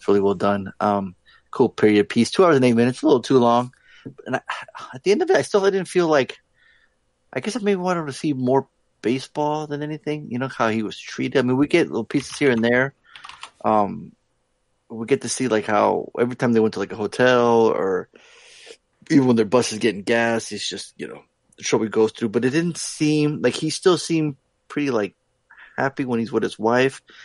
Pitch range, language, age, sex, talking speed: 110-140 Hz, English, 30-49, male, 230 wpm